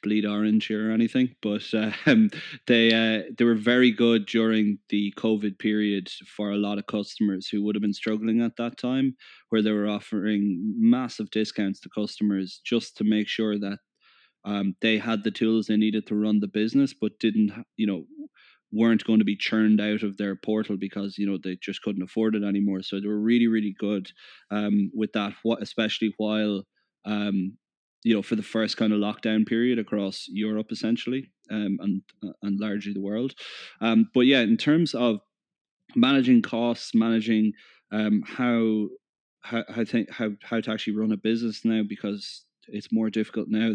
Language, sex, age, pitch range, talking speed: English, male, 20-39, 105-115 Hz, 180 wpm